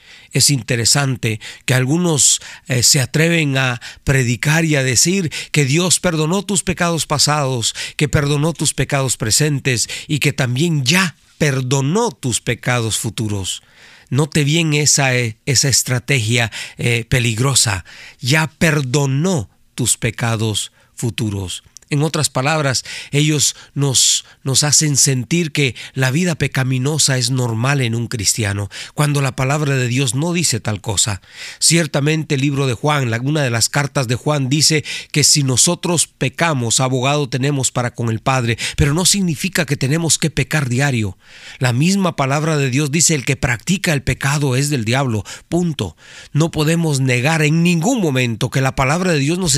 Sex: male